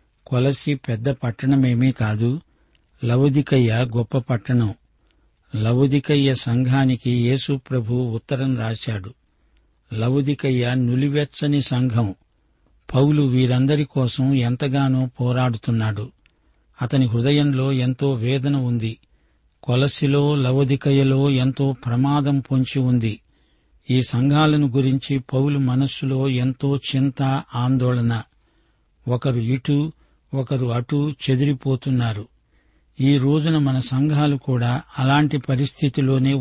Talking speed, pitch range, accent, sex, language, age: 85 wpm, 125-140 Hz, native, male, Telugu, 50-69